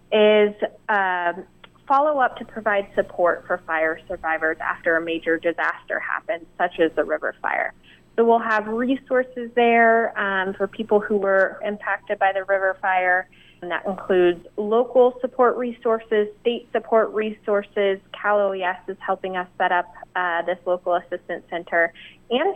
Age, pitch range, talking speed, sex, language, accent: 20-39, 180-225 Hz, 150 wpm, female, English, American